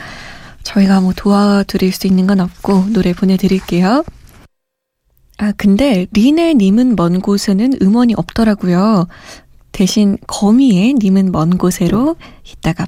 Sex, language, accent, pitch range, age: female, Korean, native, 195-245 Hz, 20-39